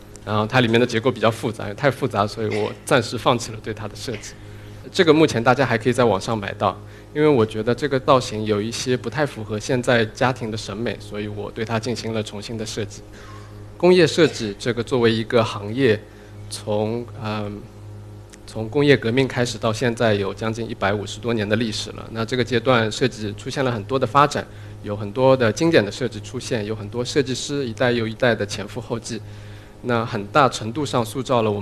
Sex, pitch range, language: male, 105-130 Hz, Chinese